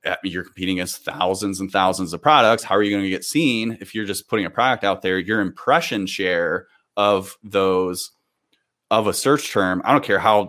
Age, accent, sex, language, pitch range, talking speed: 30-49, American, male, English, 95-115 Hz, 205 wpm